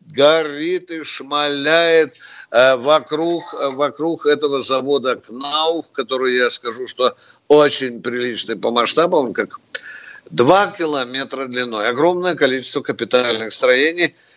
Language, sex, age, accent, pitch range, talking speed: Russian, male, 60-79, native, 130-180 Hz, 100 wpm